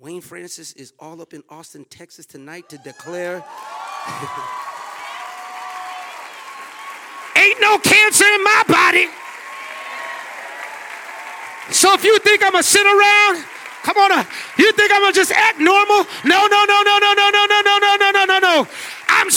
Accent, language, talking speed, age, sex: American, English, 160 wpm, 30-49, male